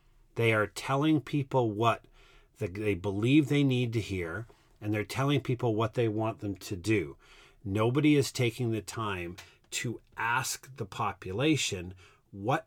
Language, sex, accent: English, male, American